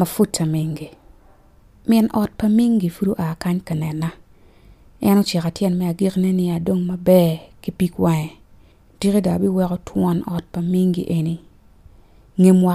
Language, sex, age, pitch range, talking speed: English, female, 30-49, 165-200 Hz, 120 wpm